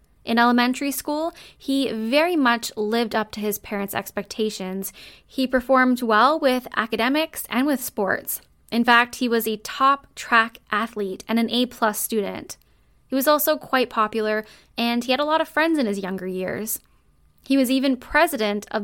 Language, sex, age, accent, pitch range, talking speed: English, female, 10-29, American, 210-265 Hz, 165 wpm